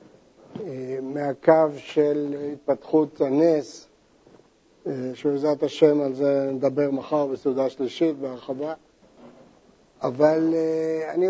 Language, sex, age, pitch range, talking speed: Hebrew, male, 50-69, 145-180 Hz, 80 wpm